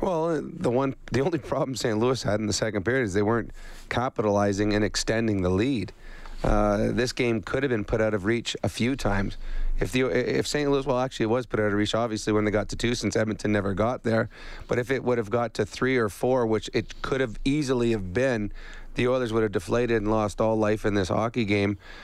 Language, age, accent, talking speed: English, 30-49, American, 240 wpm